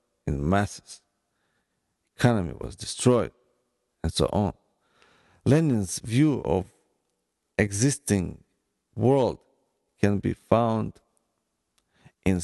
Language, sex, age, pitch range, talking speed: English, male, 50-69, 90-120 Hz, 80 wpm